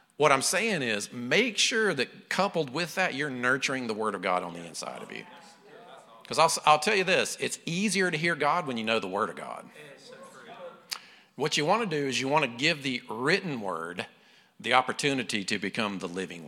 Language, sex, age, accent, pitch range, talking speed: English, male, 50-69, American, 130-185 Hz, 210 wpm